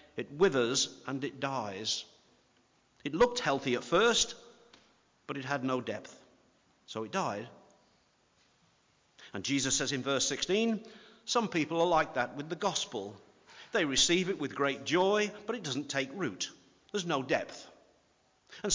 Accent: British